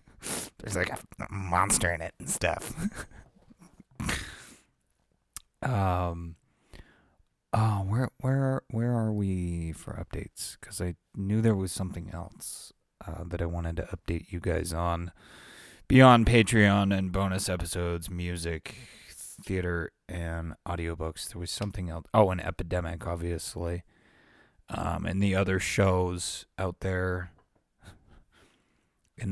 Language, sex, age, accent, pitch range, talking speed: English, male, 30-49, American, 85-100 Hz, 120 wpm